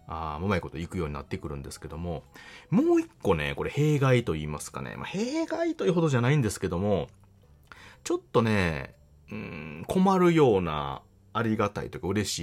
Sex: male